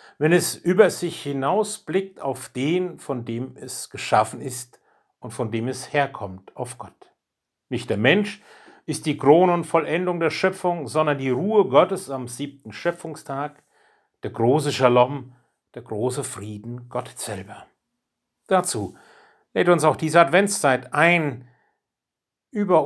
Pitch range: 120-155 Hz